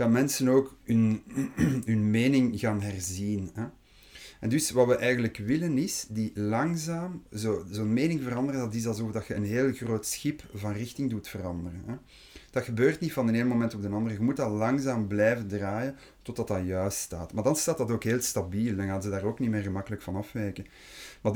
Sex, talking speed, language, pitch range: male, 205 wpm, Dutch, 100-125 Hz